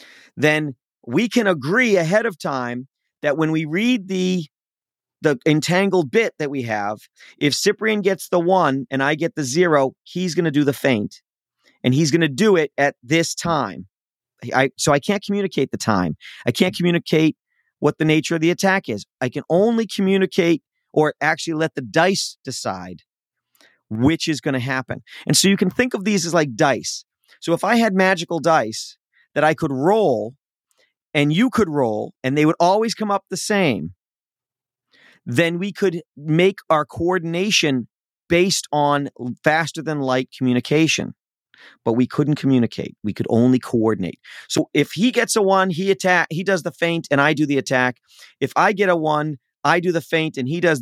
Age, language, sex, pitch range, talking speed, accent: 40-59, English, male, 130-185 Hz, 180 wpm, American